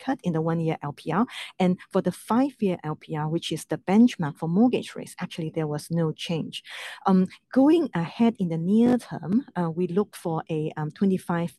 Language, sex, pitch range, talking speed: English, female, 165-195 Hz, 185 wpm